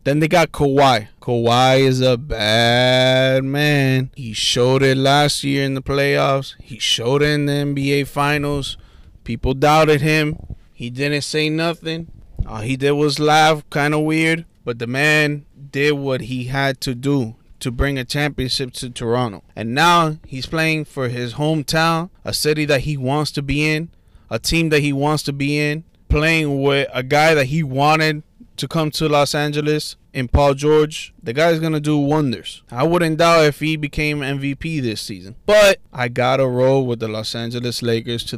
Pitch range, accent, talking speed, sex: 125-155 Hz, American, 185 wpm, male